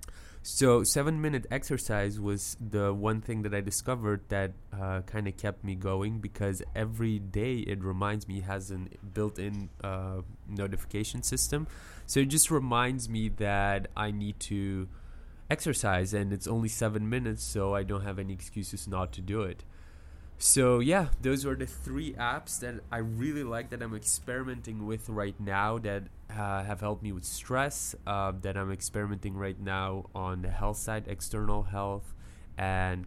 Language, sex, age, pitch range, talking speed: English, male, 20-39, 95-115 Hz, 165 wpm